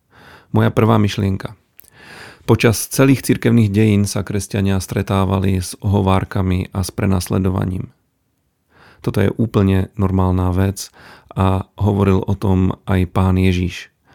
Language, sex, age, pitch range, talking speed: Slovak, male, 40-59, 95-105 Hz, 115 wpm